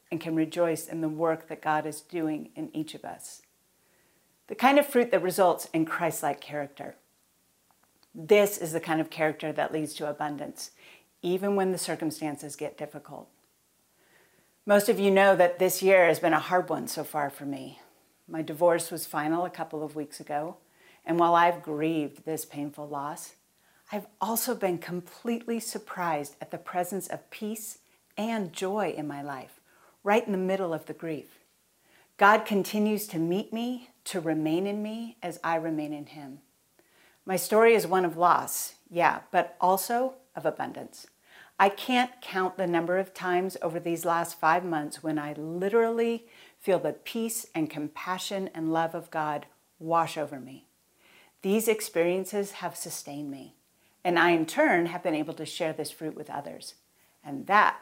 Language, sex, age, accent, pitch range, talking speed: English, female, 40-59, American, 155-195 Hz, 170 wpm